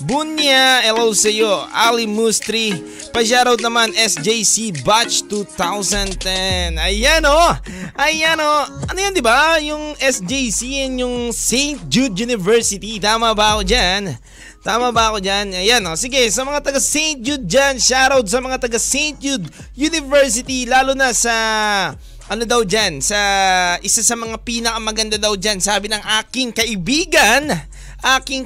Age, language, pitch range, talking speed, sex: 20-39, Filipino, 185-250 Hz, 130 wpm, male